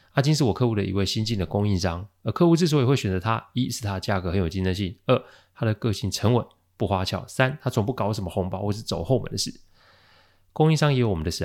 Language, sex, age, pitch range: Chinese, male, 20-39, 95-125 Hz